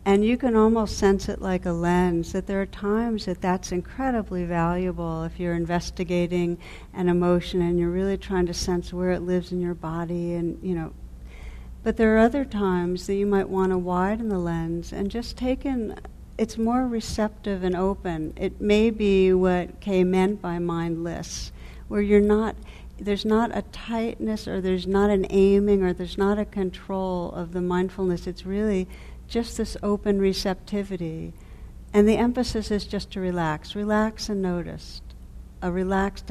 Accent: American